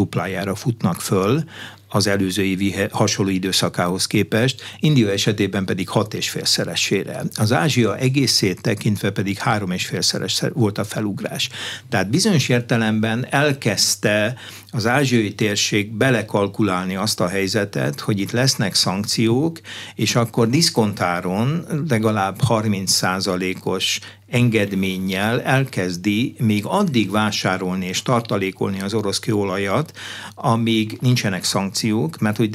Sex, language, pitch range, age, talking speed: male, Hungarian, 100-115 Hz, 60-79, 110 wpm